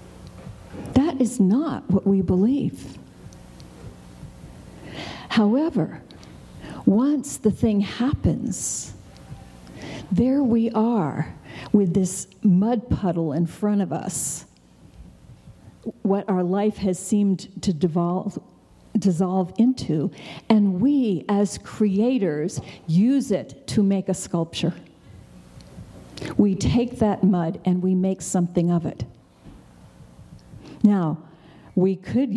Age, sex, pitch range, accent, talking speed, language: 50-69, female, 175-210 Hz, American, 95 wpm, English